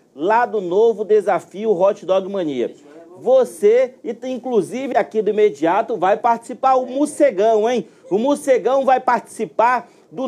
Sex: male